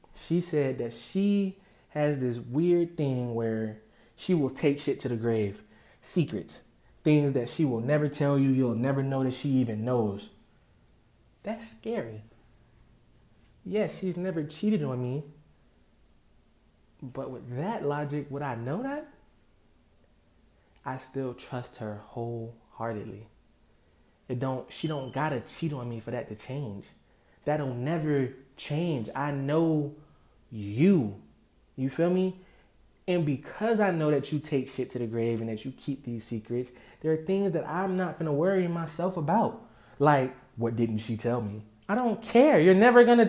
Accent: American